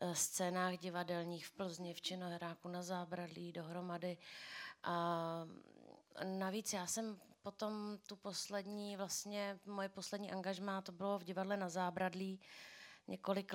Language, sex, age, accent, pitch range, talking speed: Czech, female, 30-49, native, 180-200 Hz, 115 wpm